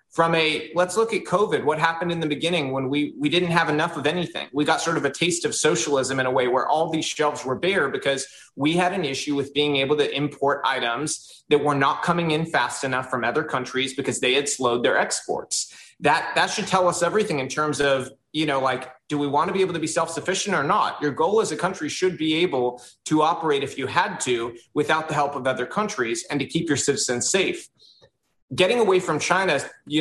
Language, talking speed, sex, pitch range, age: English, 235 wpm, male, 135-165 Hz, 30-49